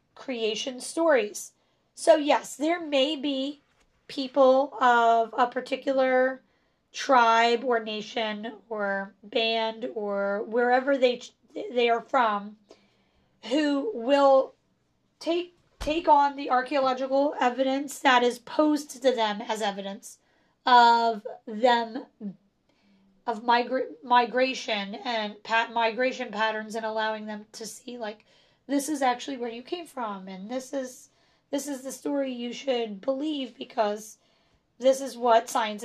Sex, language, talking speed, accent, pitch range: female, English, 125 wpm, American, 225-275 Hz